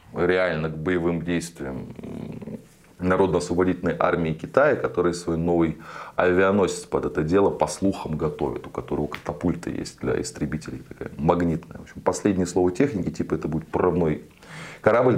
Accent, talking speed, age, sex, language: native, 140 wpm, 30-49, male, Russian